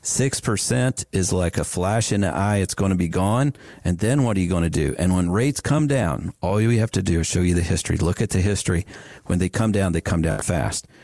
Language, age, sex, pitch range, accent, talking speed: English, 50-69, male, 90-115 Hz, American, 260 wpm